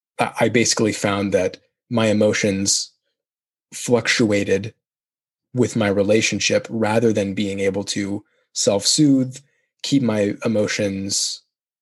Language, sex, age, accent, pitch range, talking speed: English, male, 20-39, American, 100-115 Hz, 95 wpm